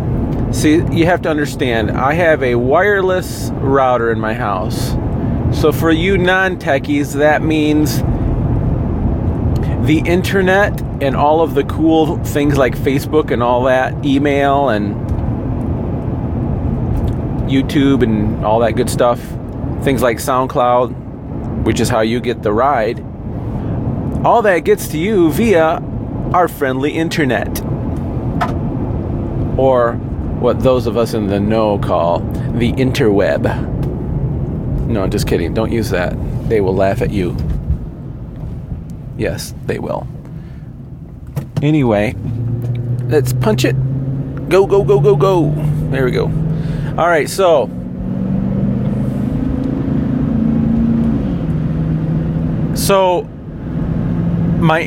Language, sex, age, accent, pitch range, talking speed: English, male, 40-59, American, 115-150 Hz, 115 wpm